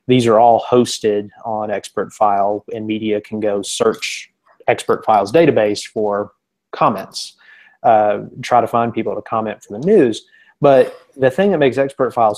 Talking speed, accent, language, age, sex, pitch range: 165 wpm, American, English, 30-49, male, 110-125 Hz